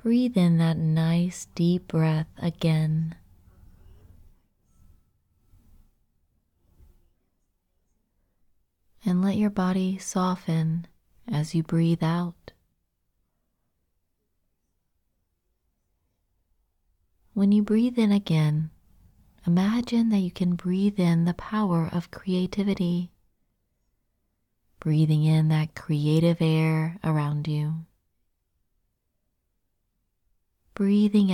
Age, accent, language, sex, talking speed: 30-49, American, English, female, 75 wpm